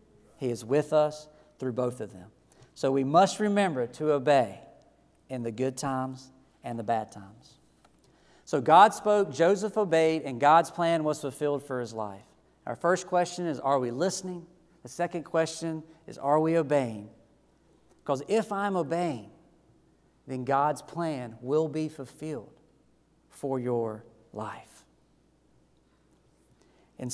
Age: 40-59